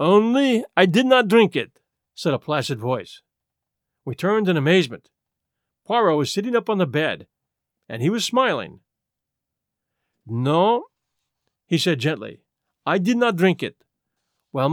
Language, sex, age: English, male, 50-69